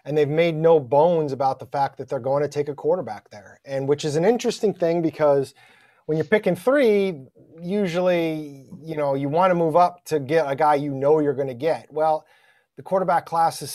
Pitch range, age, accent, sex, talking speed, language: 135-160 Hz, 30-49, American, male, 220 wpm, English